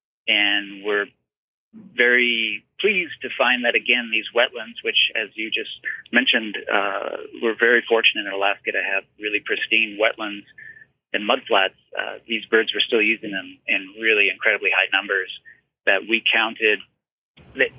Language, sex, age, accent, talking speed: English, male, 30-49, American, 150 wpm